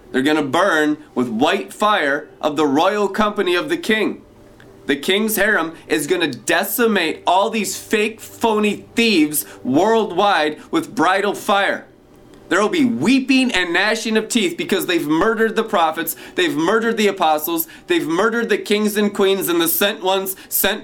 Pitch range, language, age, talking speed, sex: 160-235 Hz, English, 20-39, 165 wpm, male